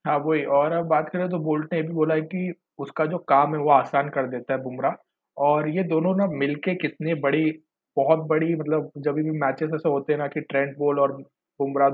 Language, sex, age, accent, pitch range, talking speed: Hindi, male, 20-39, native, 140-155 Hz, 225 wpm